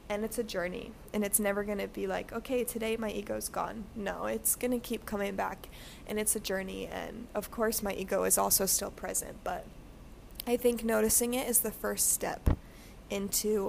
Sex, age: female, 20-39